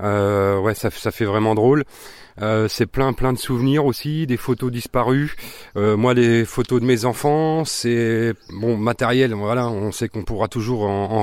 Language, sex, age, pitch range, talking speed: French, male, 40-59, 95-120 Hz, 180 wpm